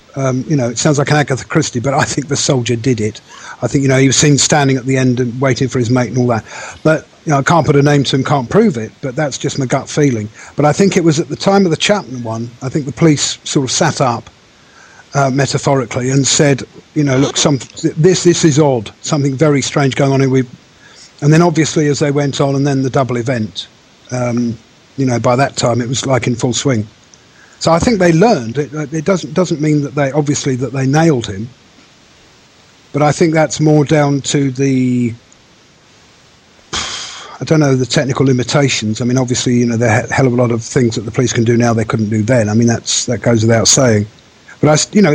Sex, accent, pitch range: male, British, 120-150 Hz